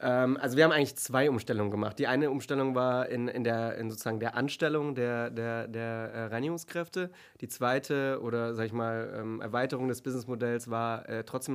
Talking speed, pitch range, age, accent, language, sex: 170 wpm, 115-130 Hz, 20-39, German, German, male